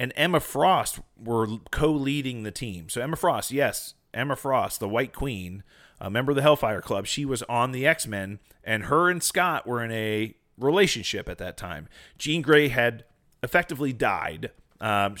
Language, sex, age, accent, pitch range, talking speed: English, male, 30-49, American, 105-135 Hz, 175 wpm